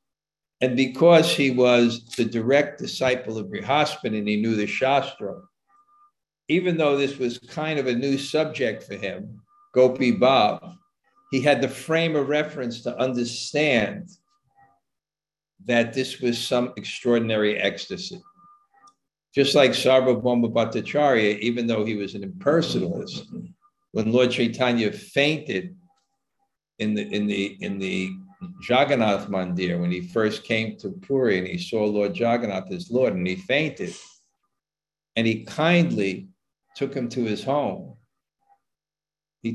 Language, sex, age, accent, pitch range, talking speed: English, male, 50-69, American, 110-155 Hz, 135 wpm